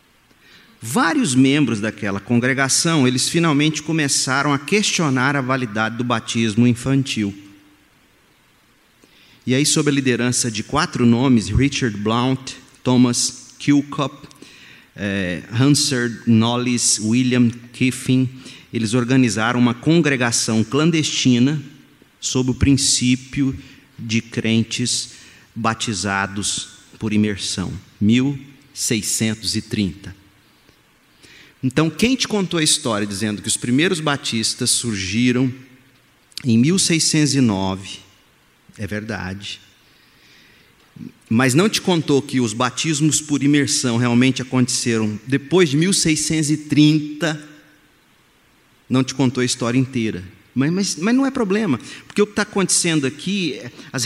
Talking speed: 100 wpm